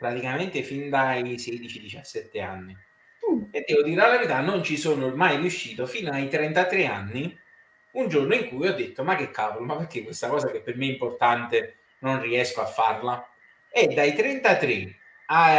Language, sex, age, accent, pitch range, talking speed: English, male, 30-49, Italian, 125-165 Hz, 170 wpm